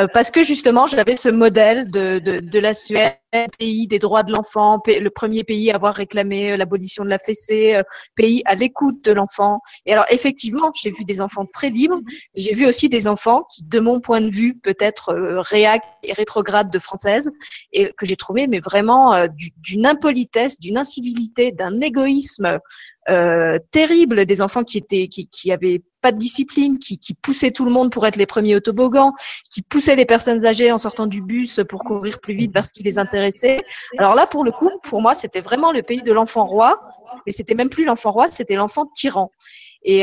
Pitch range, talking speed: 200-250 Hz, 205 wpm